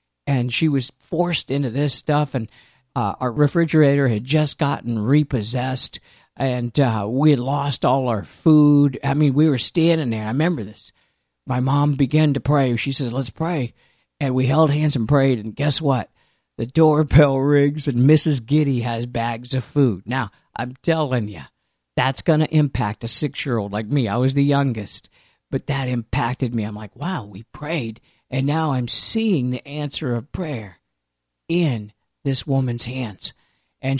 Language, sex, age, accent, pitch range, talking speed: English, male, 50-69, American, 120-150 Hz, 175 wpm